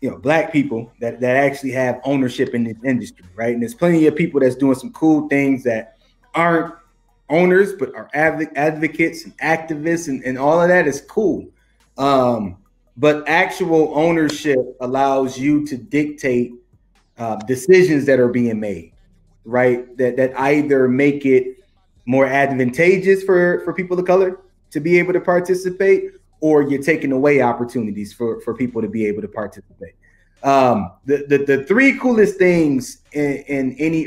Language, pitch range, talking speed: English, 120-160 Hz, 165 wpm